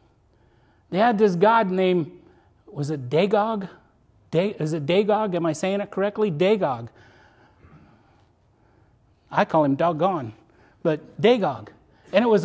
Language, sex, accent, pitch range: English, male, American, 135-200 Hz